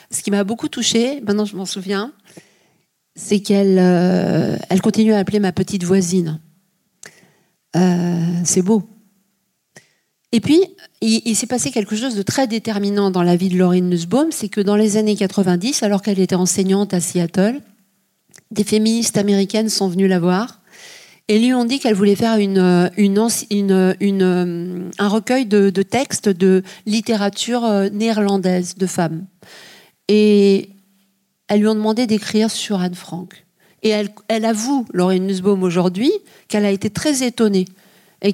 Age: 50-69